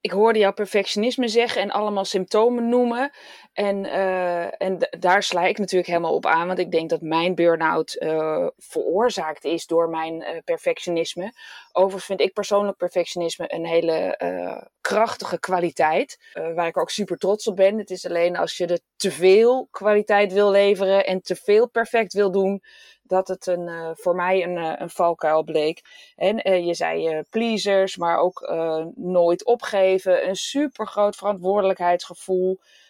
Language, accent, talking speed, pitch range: Dutch, Dutch, 165 wpm, 180-210 Hz